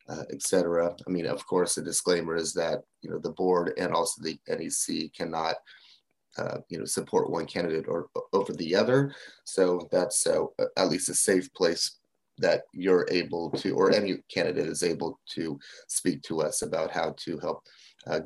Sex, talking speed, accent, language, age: male, 185 wpm, American, English, 30-49